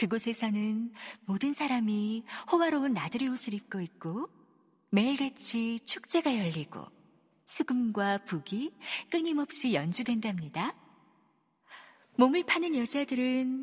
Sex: female